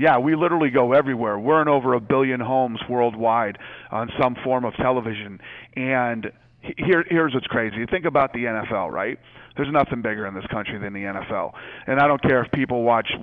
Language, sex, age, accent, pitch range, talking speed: English, male, 40-59, American, 120-140 Hz, 205 wpm